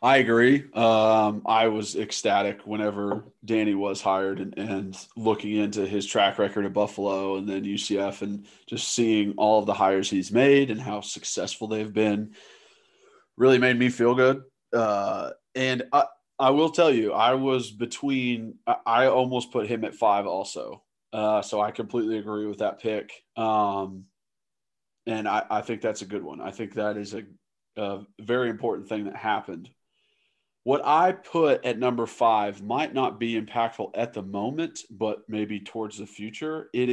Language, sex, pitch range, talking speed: English, male, 100-125 Hz, 170 wpm